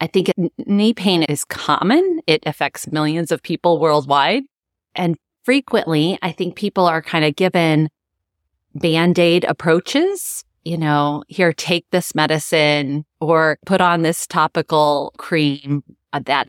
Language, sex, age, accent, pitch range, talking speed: English, female, 30-49, American, 150-190 Hz, 130 wpm